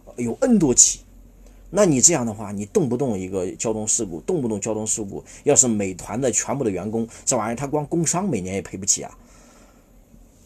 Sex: male